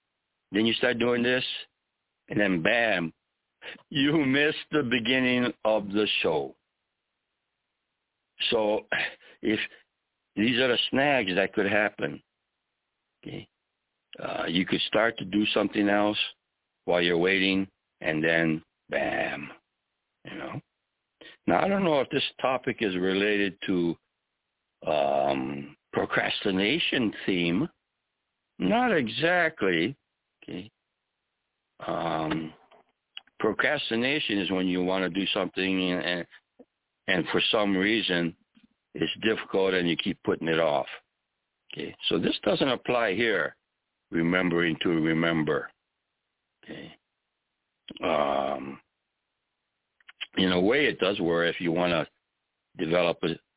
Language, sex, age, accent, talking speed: English, male, 60-79, American, 115 wpm